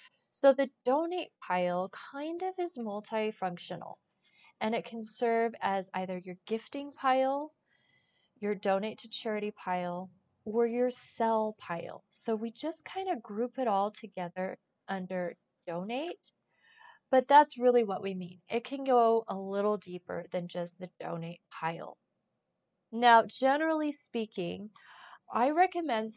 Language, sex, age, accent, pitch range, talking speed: English, female, 20-39, American, 190-245 Hz, 135 wpm